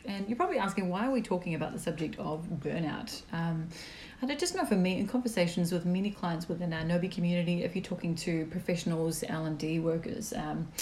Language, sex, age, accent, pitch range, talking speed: English, female, 30-49, Australian, 160-200 Hz, 205 wpm